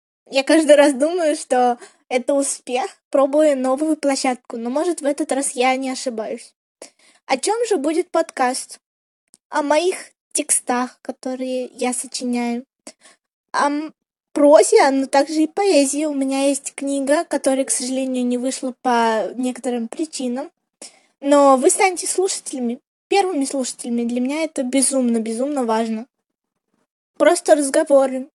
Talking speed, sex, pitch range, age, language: 125 wpm, female, 255-300 Hz, 20-39, Russian